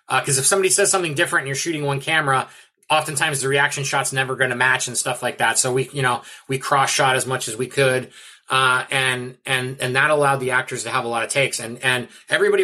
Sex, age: male, 30-49